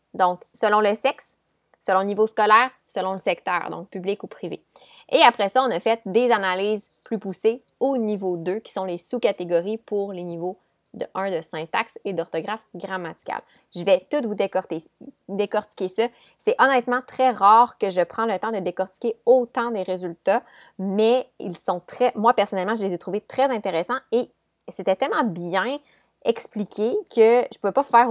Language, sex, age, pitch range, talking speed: French, female, 20-39, 190-245 Hz, 185 wpm